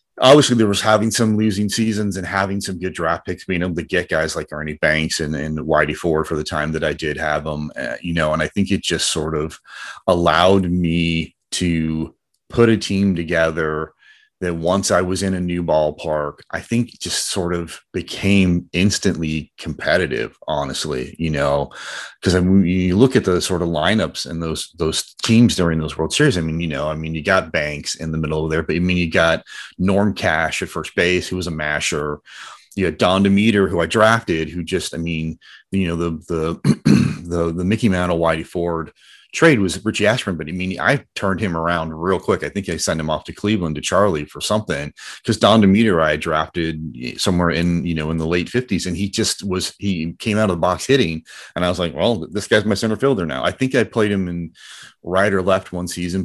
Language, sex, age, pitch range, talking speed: English, male, 30-49, 80-100 Hz, 220 wpm